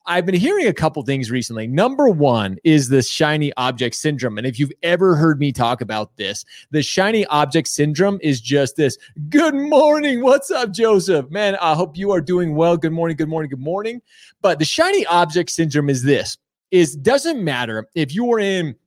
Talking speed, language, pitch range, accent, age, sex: 195 wpm, English, 135-175 Hz, American, 30-49, male